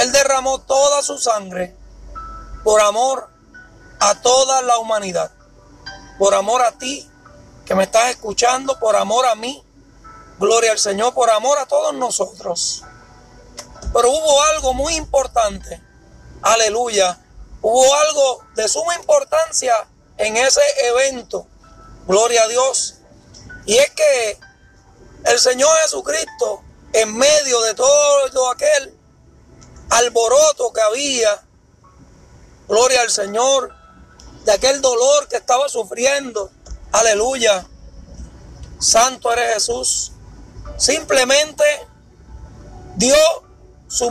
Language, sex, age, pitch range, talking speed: Spanish, male, 40-59, 215-280 Hz, 105 wpm